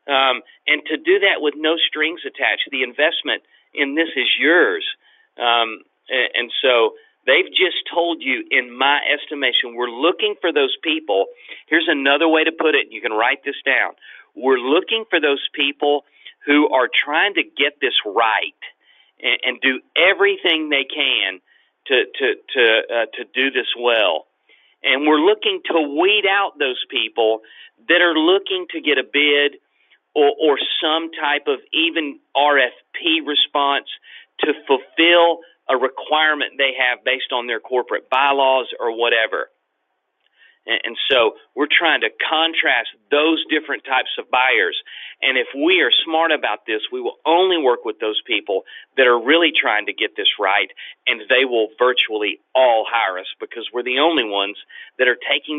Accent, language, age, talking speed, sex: American, English, 40-59, 165 wpm, male